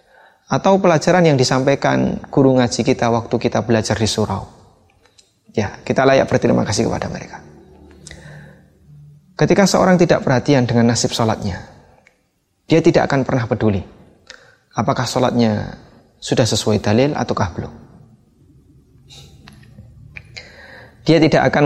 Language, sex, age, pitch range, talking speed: Indonesian, male, 20-39, 110-135 Hz, 115 wpm